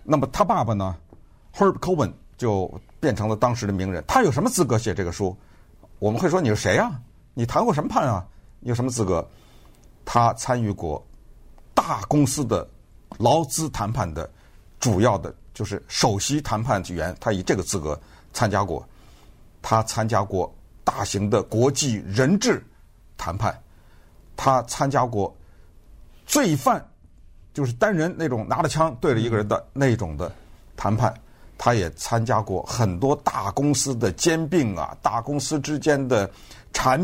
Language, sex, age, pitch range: Chinese, male, 50-69, 90-120 Hz